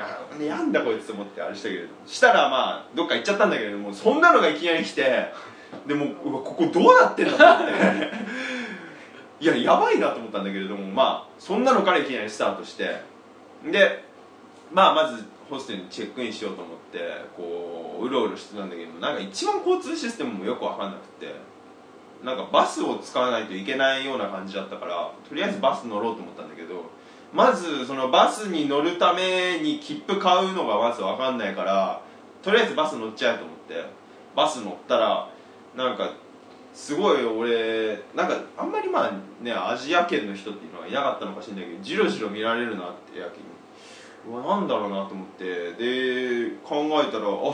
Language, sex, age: Japanese, male, 20-39